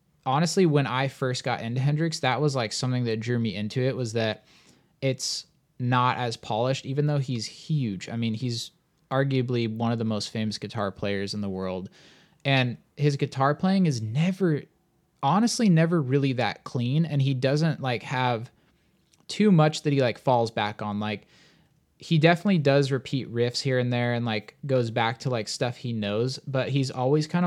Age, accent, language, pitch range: 20-39, American, English, 115-145 Hz